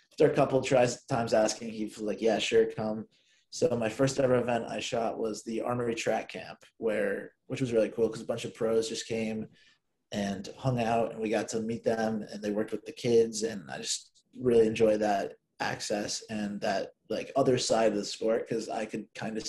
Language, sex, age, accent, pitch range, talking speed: English, male, 20-39, American, 110-130 Hz, 215 wpm